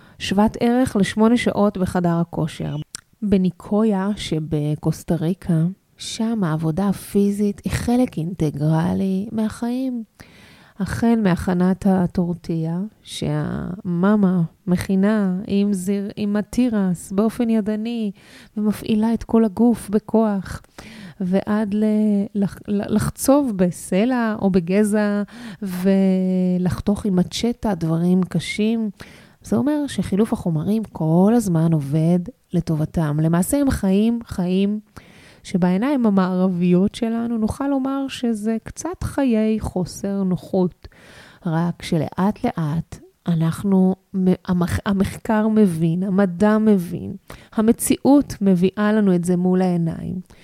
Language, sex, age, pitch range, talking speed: Hebrew, female, 20-39, 180-215 Hz, 95 wpm